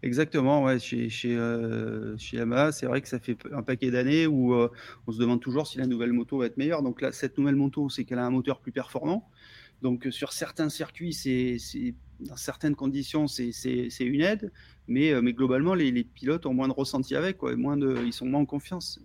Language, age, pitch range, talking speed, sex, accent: French, 30-49, 125-145 Hz, 235 wpm, male, French